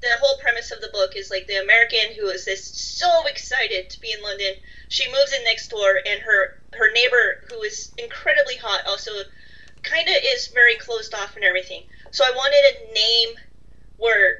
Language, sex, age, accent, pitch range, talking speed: English, female, 30-49, American, 200-325 Hz, 195 wpm